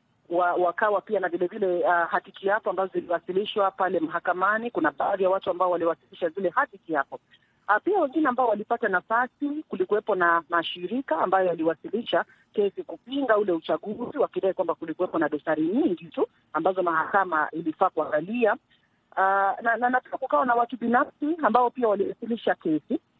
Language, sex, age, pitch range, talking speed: Swahili, female, 40-59, 175-235 Hz, 155 wpm